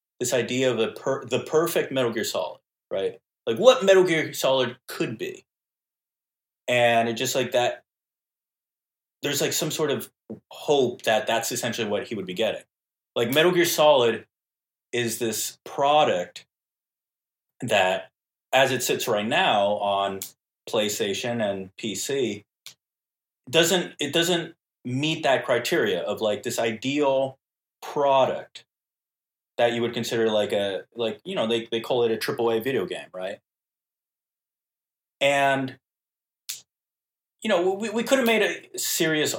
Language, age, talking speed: English, 30-49, 140 wpm